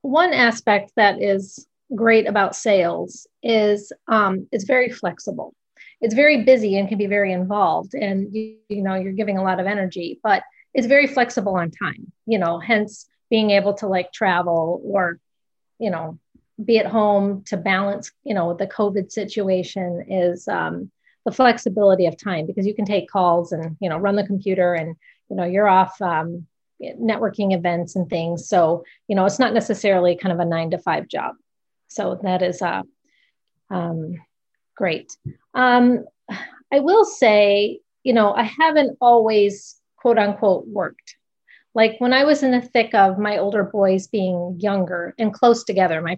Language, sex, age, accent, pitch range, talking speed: English, female, 30-49, American, 185-230 Hz, 170 wpm